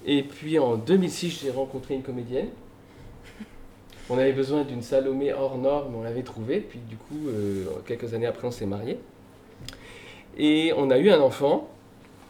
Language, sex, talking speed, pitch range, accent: French, male, 160 wpm, 115-160 Hz, French